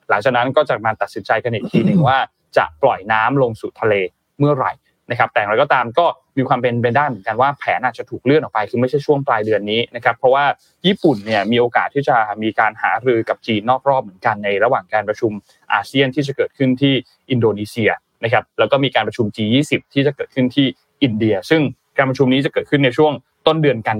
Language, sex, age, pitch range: Thai, male, 20-39, 110-140 Hz